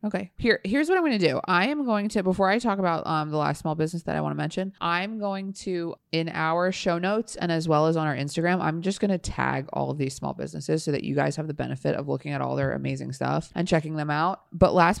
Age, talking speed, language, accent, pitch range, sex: 20-39, 280 wpm, English, American, 150-185 Hz, female